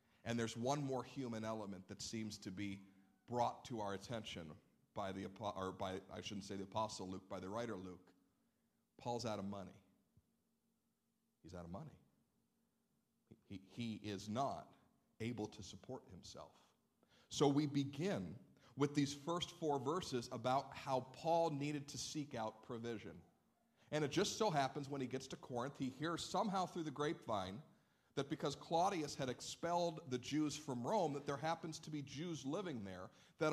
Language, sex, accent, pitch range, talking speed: English, male, American, 115-165 Hz, 170 wpm